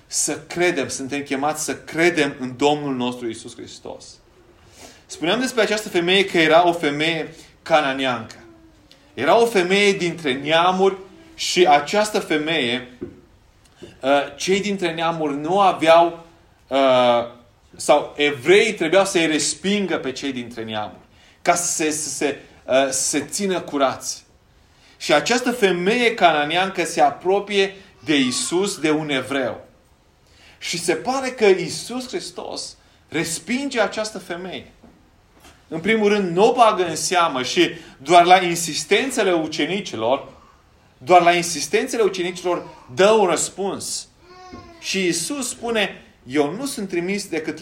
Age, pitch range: 30-49, 135-200 Hz